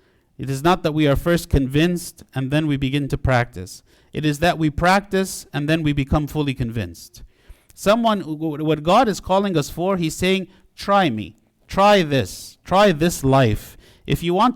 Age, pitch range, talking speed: 50-69, 135-170 Hz, 180 wpm